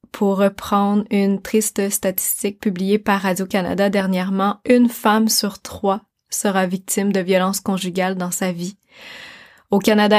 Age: 20-39